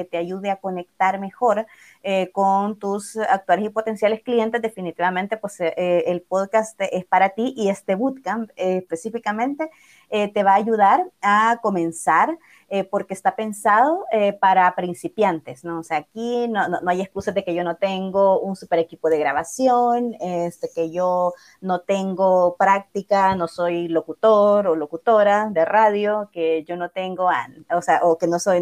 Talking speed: 175 wpm